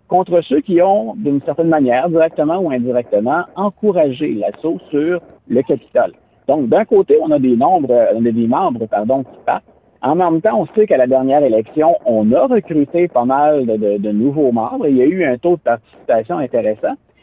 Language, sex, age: French, male, 50-69